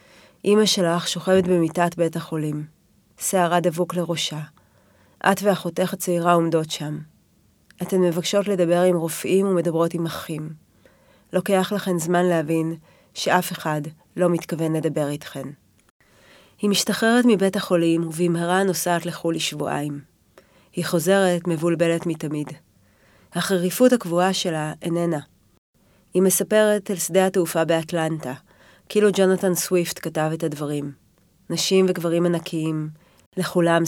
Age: 30-49